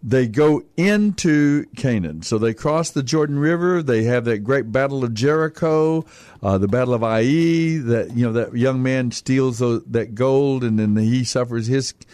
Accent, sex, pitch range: American, male, 115-145 Hz